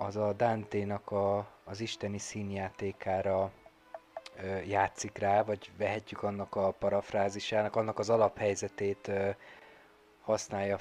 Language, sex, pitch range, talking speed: Hungarian, male, 100-110 Hz, 110 wpm